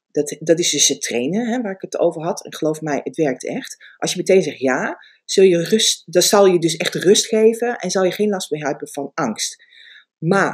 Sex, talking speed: female, 240 wpm